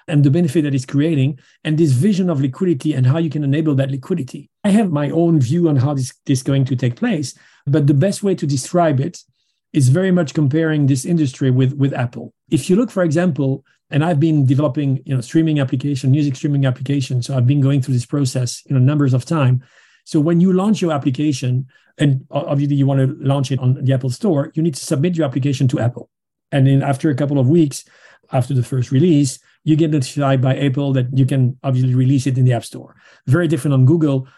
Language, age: English, 40-59